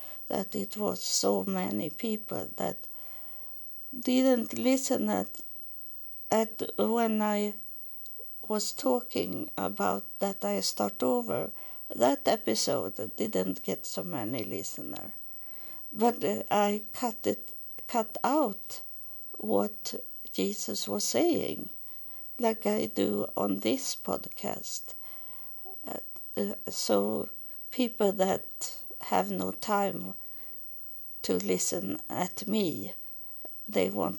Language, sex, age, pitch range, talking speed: English, female, 60-79, 190-255 Hz, 95 wpm